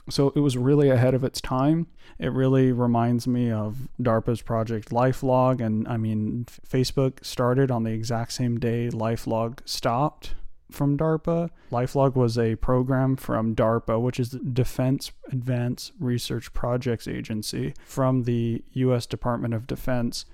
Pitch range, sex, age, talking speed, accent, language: 115-130 Hz, male, 20-39, 150 wpm, American, English